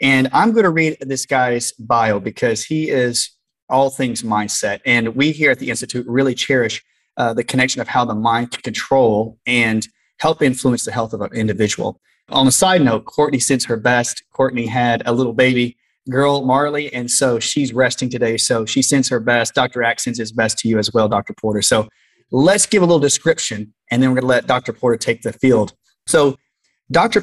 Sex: male